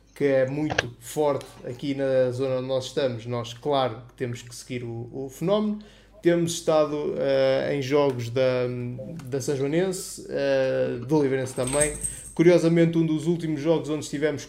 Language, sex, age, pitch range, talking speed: Portuguese, male, 20-39, 120-150 Hz, 145 wpm